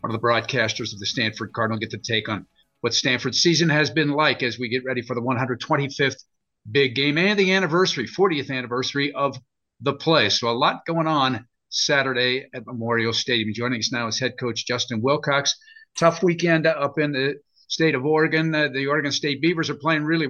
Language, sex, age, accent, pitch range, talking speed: English, male, 50-69, American, 125-160 Hz, 200 wpm